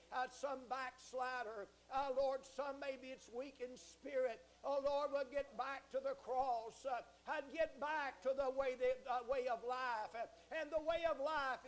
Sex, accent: male, American